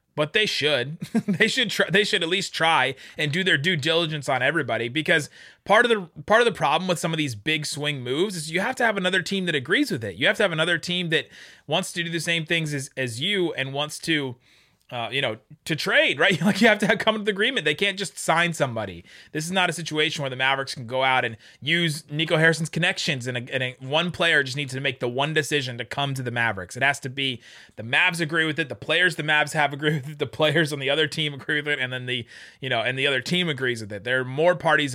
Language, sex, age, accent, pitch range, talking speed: English, male, 30-49, American, 125-165 Hz, 270 wpm